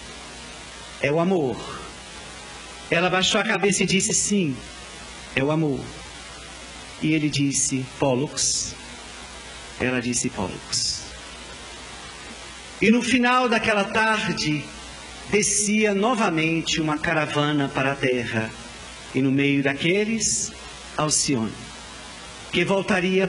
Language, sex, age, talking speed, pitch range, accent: Portuguese, male, 50-69, 100 wpm, 140-225 Hz, Brazilian